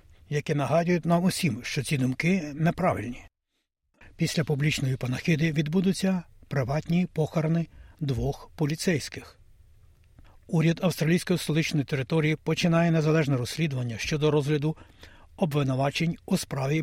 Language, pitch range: Ukrainian, 135-160 Hz